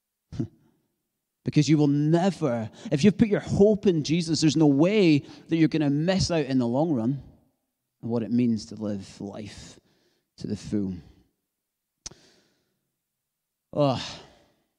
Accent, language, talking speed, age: British, English, 145 wpm, 30-49